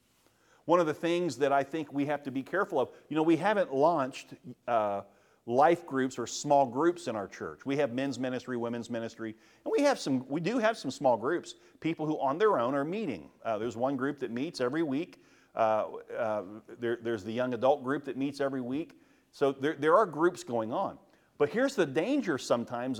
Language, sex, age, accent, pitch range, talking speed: English, male, 50-69, American, 115-160 Hz, 215 wpm